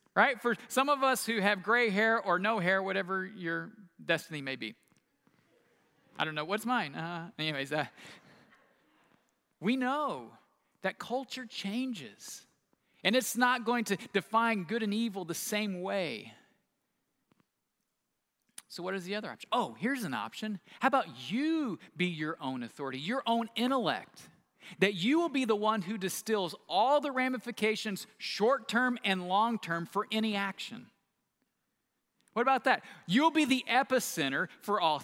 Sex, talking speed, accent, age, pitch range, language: male, 150 wpm, American, 40-59, 195-250 Hz, English